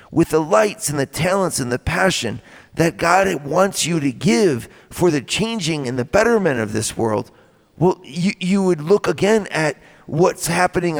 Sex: male